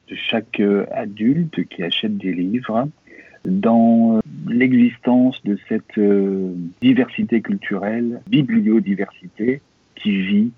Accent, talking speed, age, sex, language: French, 85 wpm, 50-69, male, French